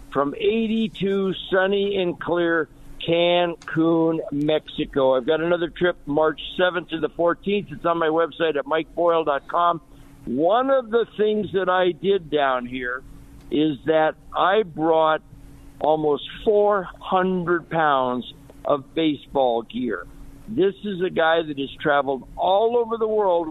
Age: 60-79